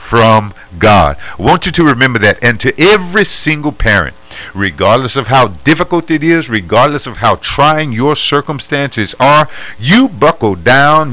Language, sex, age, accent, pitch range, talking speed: English, male, 50-69, American, 115-160 Hz, 155 wpm